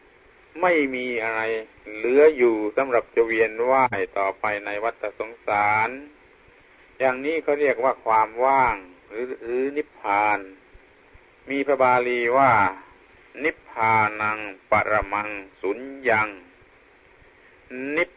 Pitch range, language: 110-150 Hz, Thai